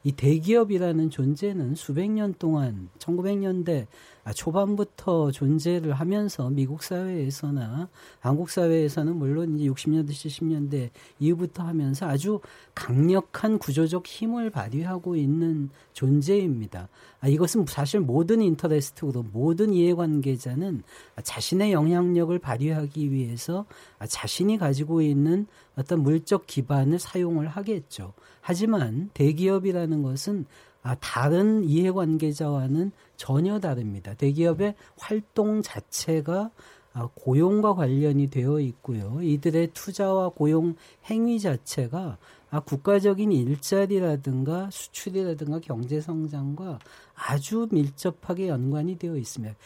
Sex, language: male, Korean